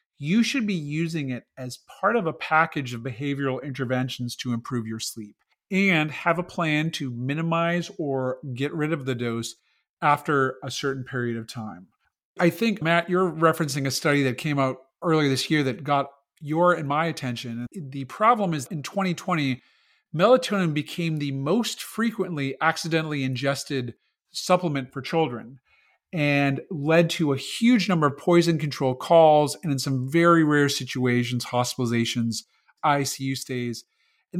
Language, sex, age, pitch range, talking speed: English, male, 40-59, 130-170 Hz, 155 wpm